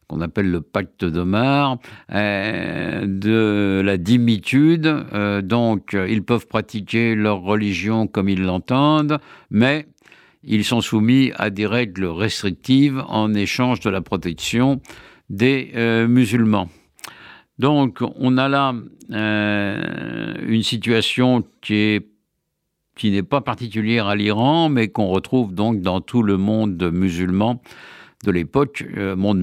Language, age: French, 60-79